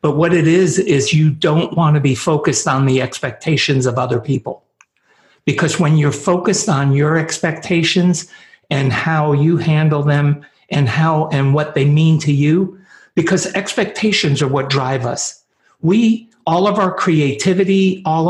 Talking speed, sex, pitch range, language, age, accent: 155 wpm, male, 135-170 Hz, English, 60-79, American